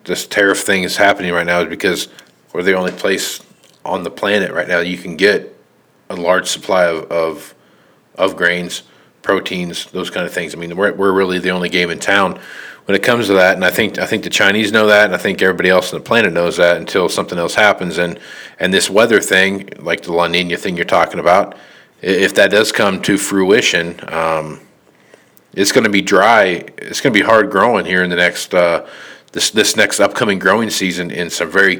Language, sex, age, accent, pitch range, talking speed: English, male, 40-59, American, 85-100 Hz, 230 wpm